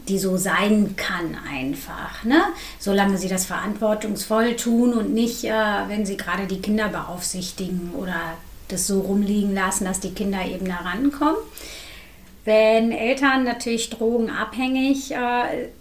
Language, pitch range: German, 195-250 Hz